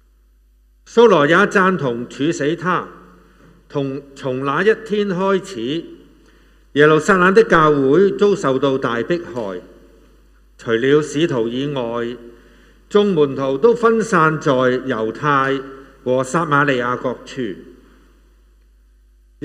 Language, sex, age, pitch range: Chinese, male, 50-69, 120-185 Hz